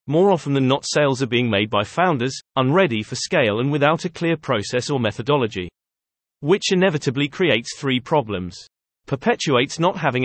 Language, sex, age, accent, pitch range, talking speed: English, male, 30-49, British, 120-160 Hz, 165 wpm